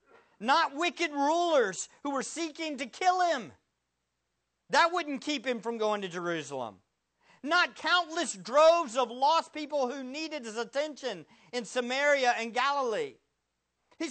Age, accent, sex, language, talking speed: 50-69, American, male, English, 135 wpm